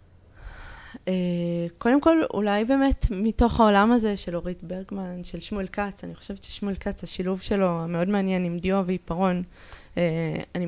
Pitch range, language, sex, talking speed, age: 165-200 Hz, Hebrew, female, 140 wpm, 20-39